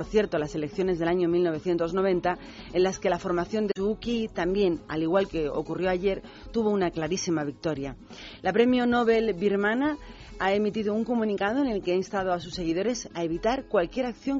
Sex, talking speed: female, 185 wpm